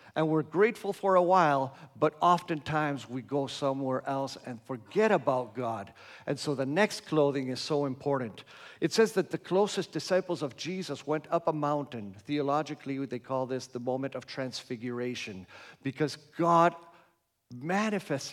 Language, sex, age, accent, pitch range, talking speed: English, male, 50-69, American, 125-155 Hz, 155 wpm